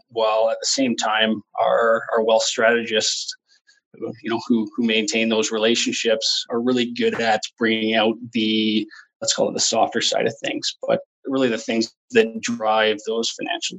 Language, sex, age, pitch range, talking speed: English, male, 20-39, 110-120 Hz, 170 wpm